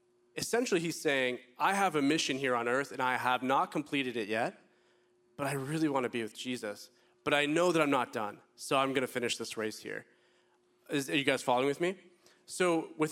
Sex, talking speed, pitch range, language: male, 220 wpm, 120-155 Hz, English